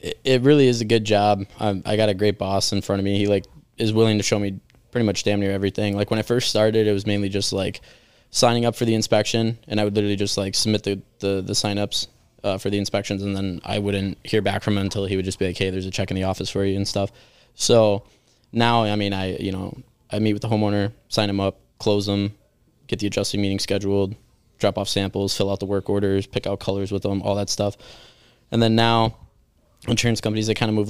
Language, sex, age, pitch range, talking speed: English, male, 20-39, 100-110 Hz, 250 wpm